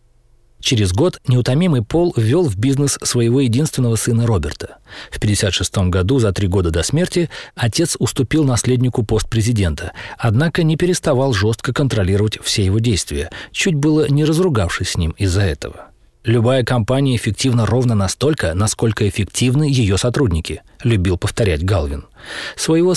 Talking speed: 140 wpm